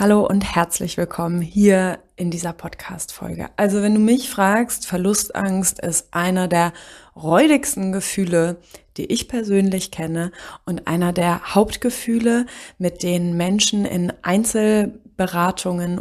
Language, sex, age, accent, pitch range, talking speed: German, female, 20-39, German, 185-230 Hz, 120 wpm